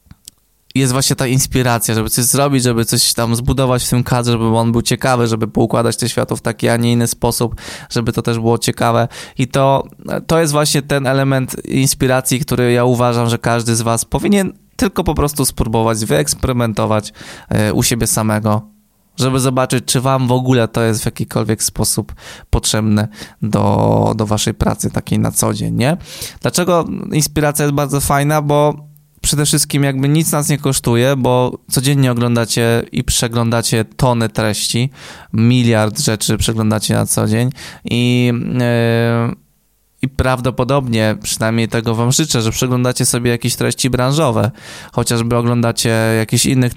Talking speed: 155 wpm